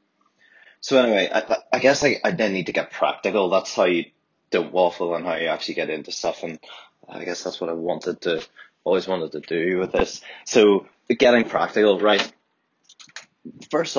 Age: 20-39